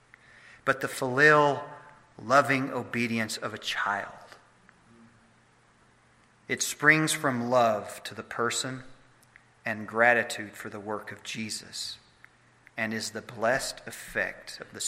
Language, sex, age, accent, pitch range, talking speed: English, male, 40-59, American, 110-145 Hz, 115 wpm